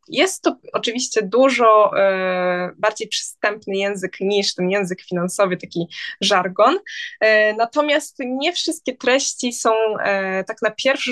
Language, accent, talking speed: Polish, native, 115 wpm